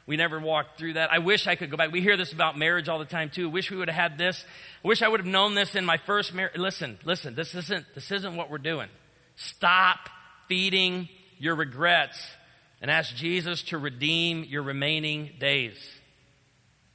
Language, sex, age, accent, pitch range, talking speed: English, male, 40-59, American, 135-170 Hz, 210 wpm